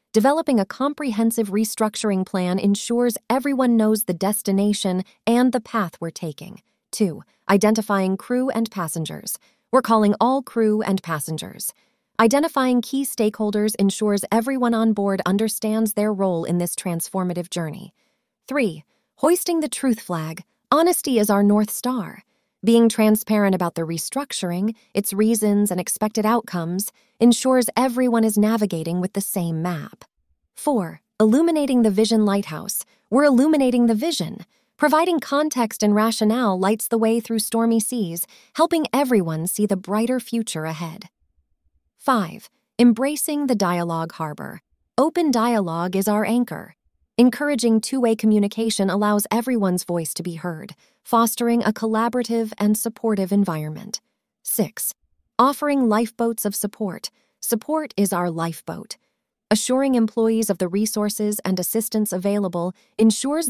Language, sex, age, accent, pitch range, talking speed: English, female, 20-39, American, 195-245 Hz, 130 wpm